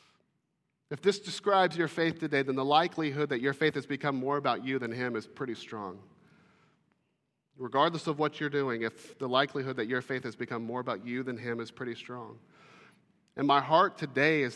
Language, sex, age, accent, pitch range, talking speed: English, male, 40-59, American, 145-205 Hz, 200 wpm